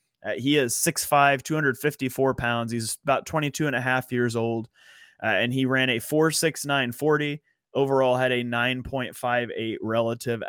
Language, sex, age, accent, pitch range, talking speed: English, male, 20-39, American, 120-150 Hz, 160 wpm